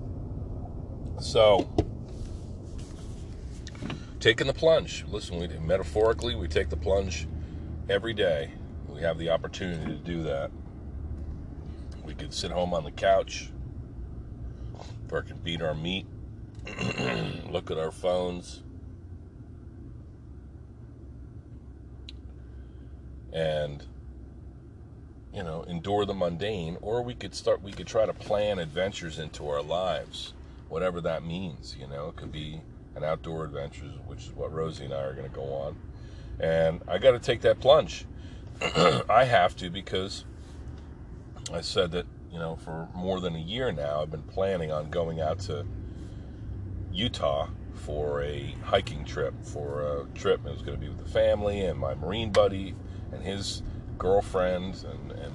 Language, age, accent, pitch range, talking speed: English, 40-59, American, 75-95 Hz, 140 wpm